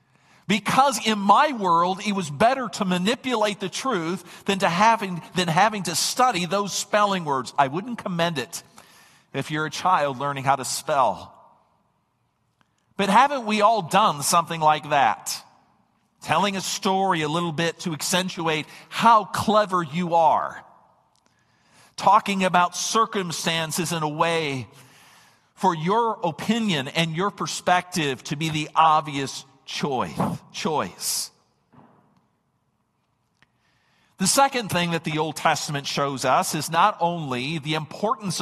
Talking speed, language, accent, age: 130 wpm, English, American, 50-69